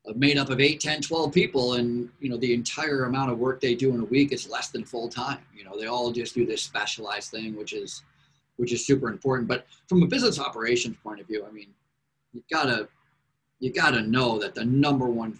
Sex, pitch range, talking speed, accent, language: male, 120-140 Hz, 240 wpm, American, English